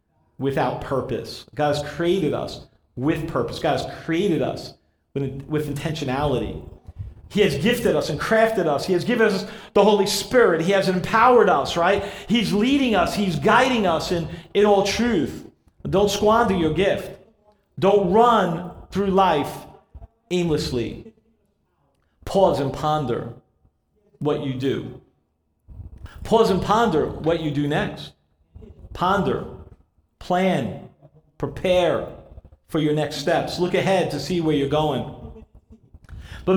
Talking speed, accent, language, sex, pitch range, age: 135 wpm, American, English, male, 150-230 Hz, 40-59